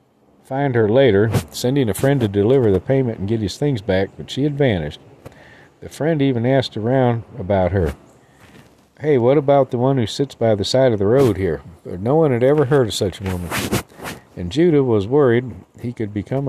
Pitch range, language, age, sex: 100-135 Hz, English, 50-69, male